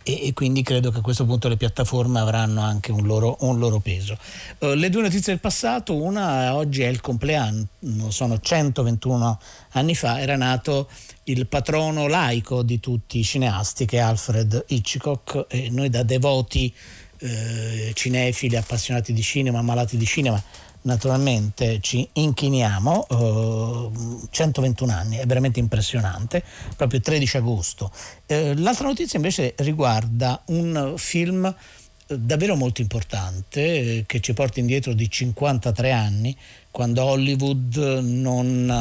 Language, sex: Italian, male